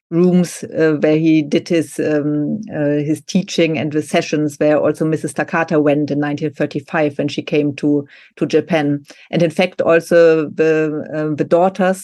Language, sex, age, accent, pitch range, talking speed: English, female, 40-59, German, 150-170 Hz, 170 wpm